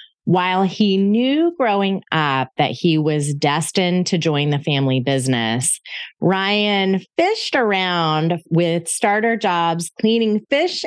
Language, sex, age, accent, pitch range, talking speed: English, female, 30-49, American, 155-210 Hz, 120 wpm